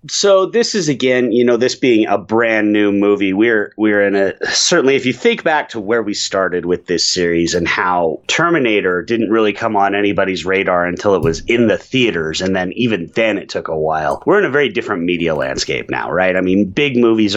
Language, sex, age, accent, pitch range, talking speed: English, male, 30-49, American, 95-125 Hz, 225 wpm